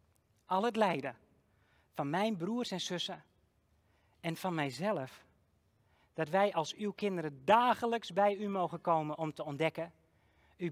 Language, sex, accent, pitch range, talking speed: Dutch, male, Dutch, 145-195 Hz, 140 wpm